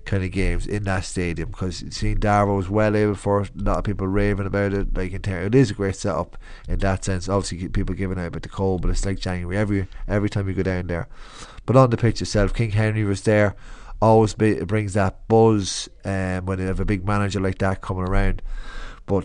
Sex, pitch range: male, 95-105 Hz